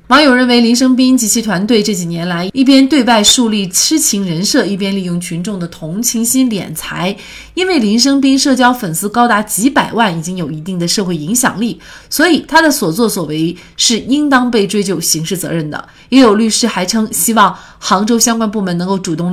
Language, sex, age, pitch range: Chinese, female, 30-49, 180-250 Hz